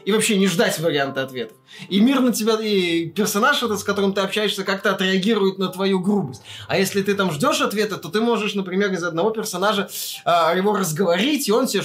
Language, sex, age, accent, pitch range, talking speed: Russian, male, 20-39, native, 185-220 Hz, 215 wpm